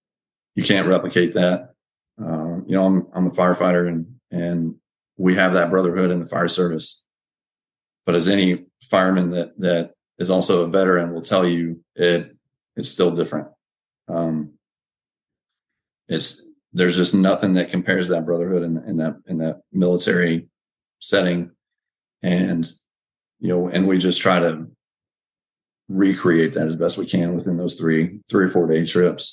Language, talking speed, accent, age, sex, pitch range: English, 155 wpm, American, 40-59, male, 85-90 Hz